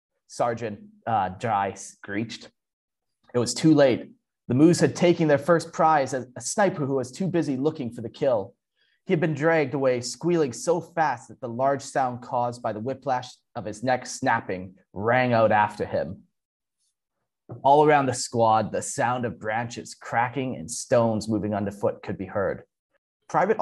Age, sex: 30-49, male